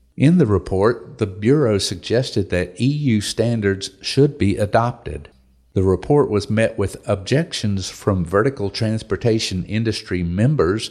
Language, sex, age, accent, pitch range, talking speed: English, male, 50-69, American, 95-130 Hz, 125 wpm